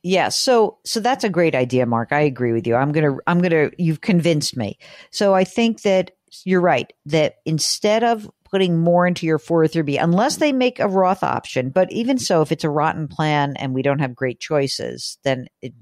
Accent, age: American, 50-69